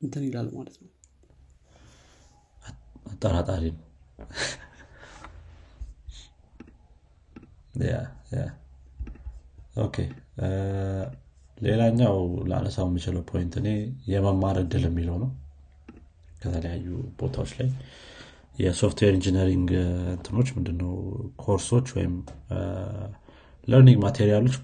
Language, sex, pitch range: Amharic, male, 85-110 Hz